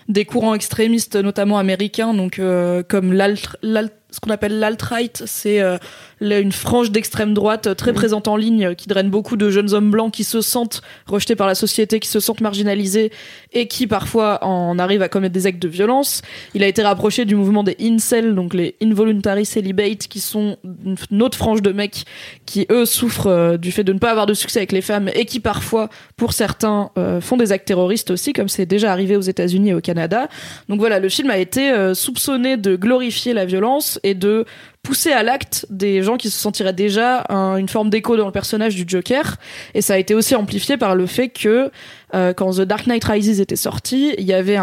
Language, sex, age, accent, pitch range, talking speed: French, female, 20-39, French, 195-225 Hz, 220 wpm